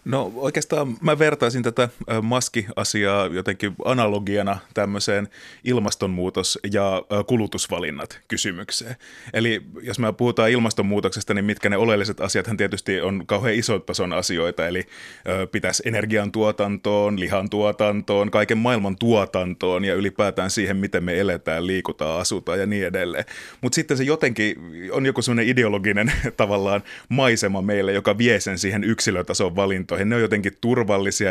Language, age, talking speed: Finnish, 30-49, 130 wpm